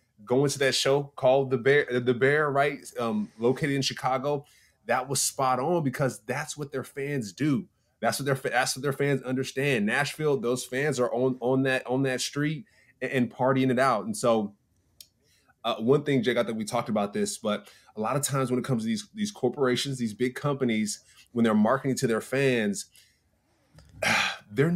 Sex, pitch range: male, 120-140 Hz